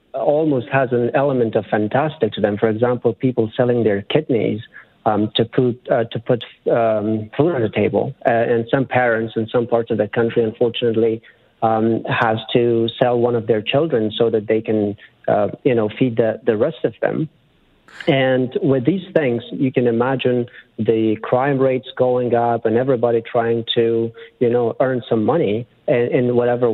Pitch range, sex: 115-130 Hz, male